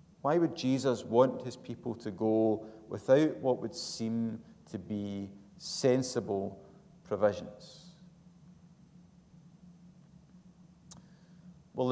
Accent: British